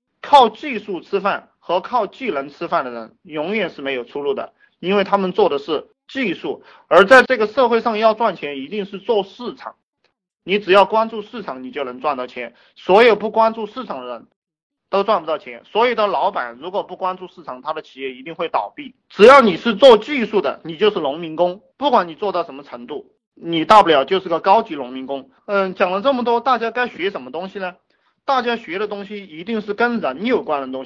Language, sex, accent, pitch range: Chinese, male, native, 160-245 Hz